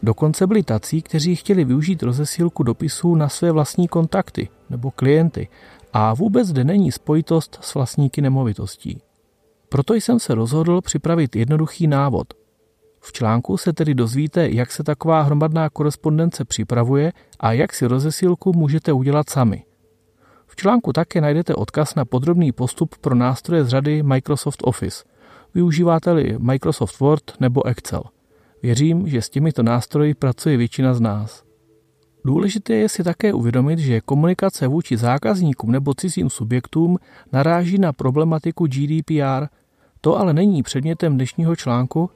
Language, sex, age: Czech, male, 40-59